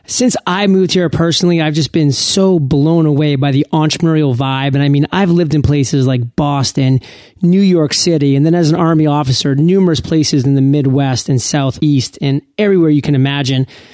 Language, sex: English, male